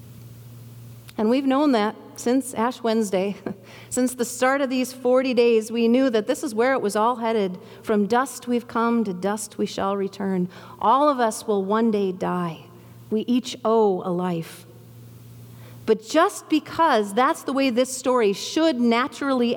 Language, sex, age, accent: English, female, 40-59, American